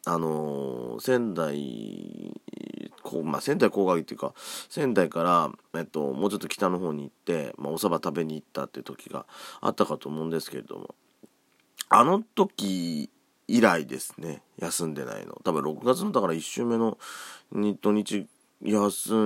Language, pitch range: Japanese, 80-105 Hz